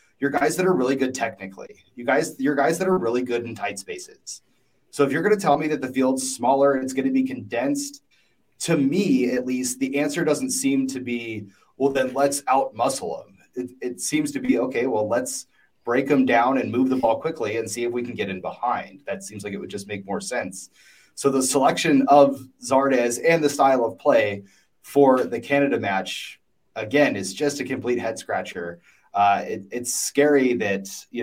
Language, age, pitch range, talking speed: English, 30-49, 105-140 Hz, 210 wpm